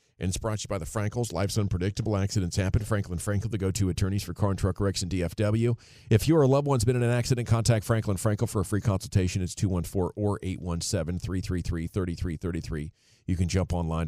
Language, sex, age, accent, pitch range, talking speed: English, male, 40-59, American, 95-120 Hz, 210 wpm